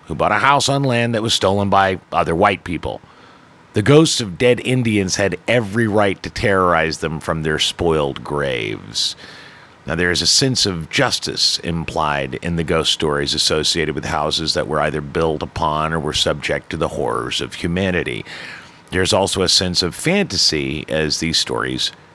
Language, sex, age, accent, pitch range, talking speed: English, male, 50-69, American, 80-105 Hz, 175 wpm